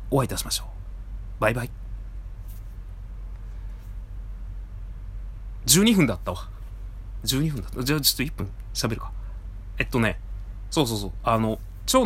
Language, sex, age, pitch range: Japanese, male, 30-49, 95-140 Hz